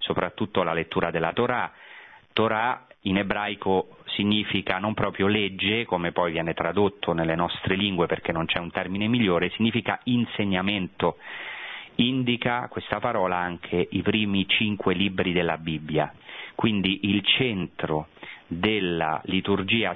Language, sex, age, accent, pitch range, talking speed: Italian, male, 30-49, native, 85-105 Hz, 125 wpm